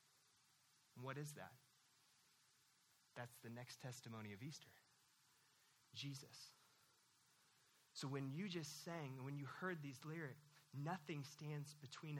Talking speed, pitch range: 115 wpm, 145-235 Hz